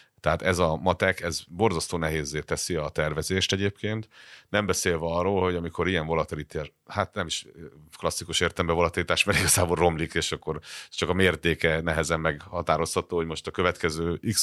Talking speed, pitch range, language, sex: 160 wpm, 80-95 Hz, Hungarian, male